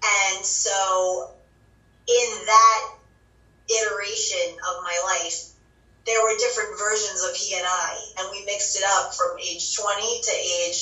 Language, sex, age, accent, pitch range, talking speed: English, female, 30-49, American, 180-215 Hz, 145 wpm